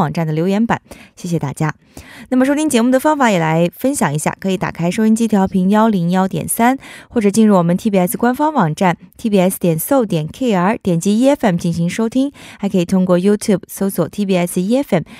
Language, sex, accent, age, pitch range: Korean, female, Chinese, 20-39, 175-245 Hz